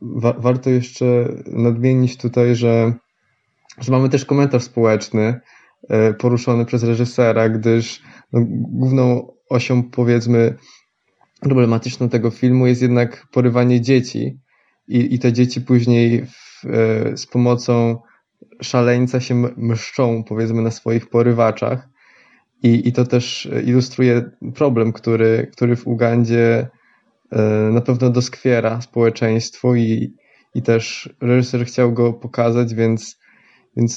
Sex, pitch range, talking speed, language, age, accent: male, 115-130 Hz, 110 wpm, Polish, 20-39, native